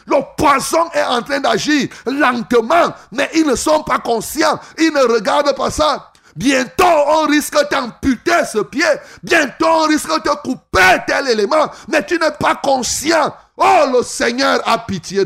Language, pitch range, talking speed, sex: French, 190-280 Hz, 165 wpm, male